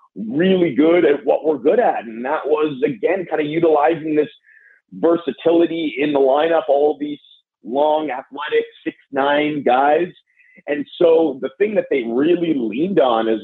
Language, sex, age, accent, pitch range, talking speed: English, male, 40-59, American, 145-195 Hz, 165 wpm